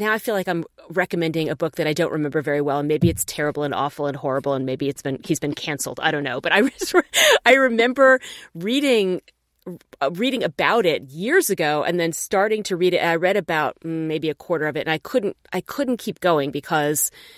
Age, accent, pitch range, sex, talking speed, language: 30-49, American, 150-195 Hz, female, 225 wpm, English